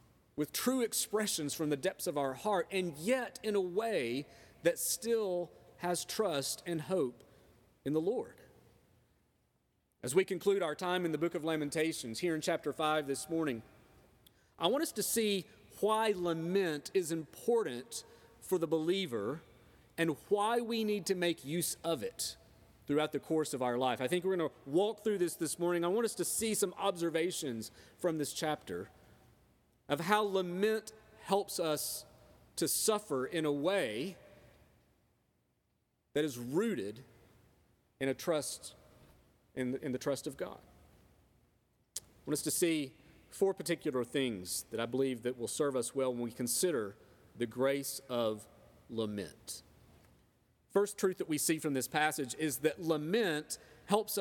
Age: 40-59